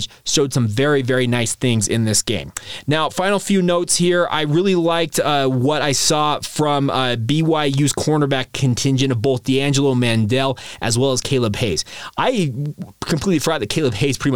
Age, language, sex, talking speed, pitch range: 20-39, English, male, 175 wpm, 125-155 Hz